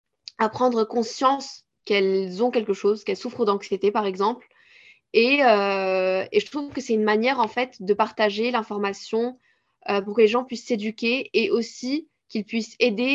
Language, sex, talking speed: French, female, 175 wpm